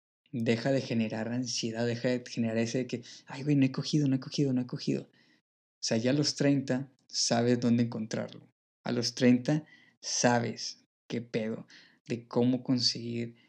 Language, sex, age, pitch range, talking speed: Spanish, male, 20-39, 115-135 Hz, 175 wpm